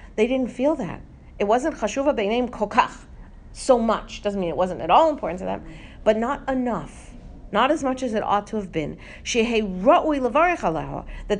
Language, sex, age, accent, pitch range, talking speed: English, female, 50-69, American, 170-235 Hz, 165 wpm